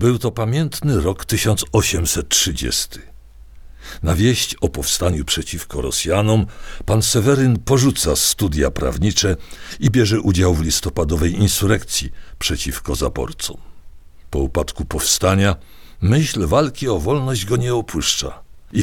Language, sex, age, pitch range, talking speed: Polish, male, 60-79, 75-110 Hz, 110 wpm